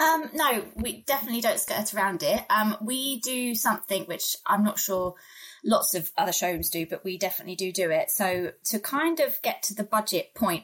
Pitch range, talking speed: 170-210 Hz, 205 wpm